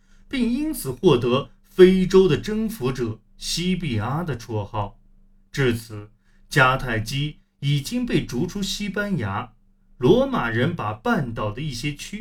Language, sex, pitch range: Chinese, male, 110-170 Hz